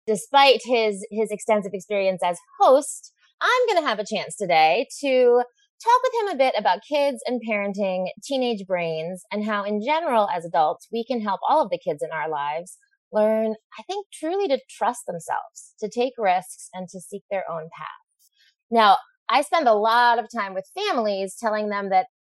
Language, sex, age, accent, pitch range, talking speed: English, female, 20-39, American, 185-265 Hz, 190 wpm